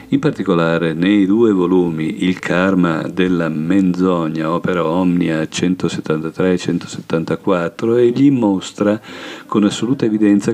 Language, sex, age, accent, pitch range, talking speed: Italian, male, 50-69, native, 90-110 Hz, 95 wpm